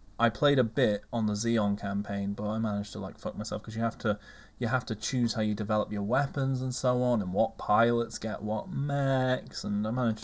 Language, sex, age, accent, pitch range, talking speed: English, male, 20-39, British, 100-130 Hz, 235 wpm